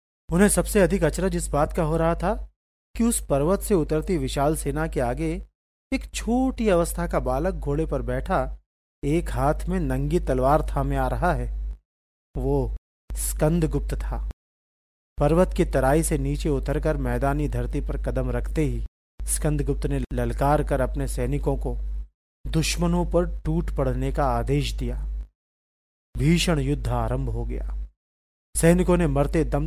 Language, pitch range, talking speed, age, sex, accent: Hindi, 120-155 Hz, 150 wpm, 40-59, male, native